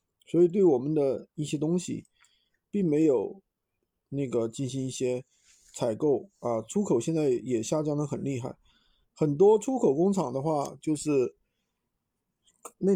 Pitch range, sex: 140-190 Hz, male